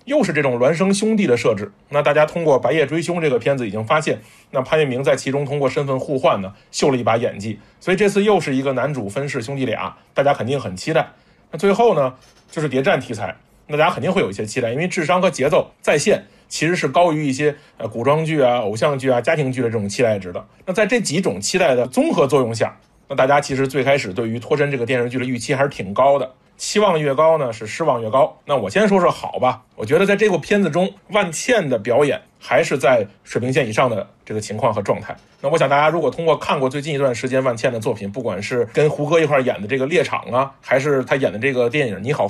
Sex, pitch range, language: male, 125-165 Hz, Chinese